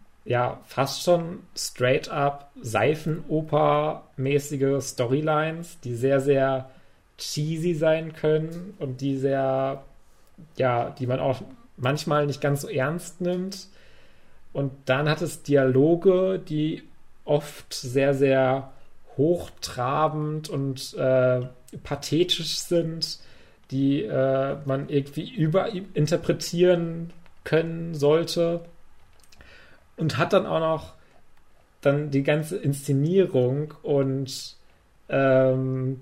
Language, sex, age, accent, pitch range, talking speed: German, male, 30-49, German, 130-155 Hz, 95 wpm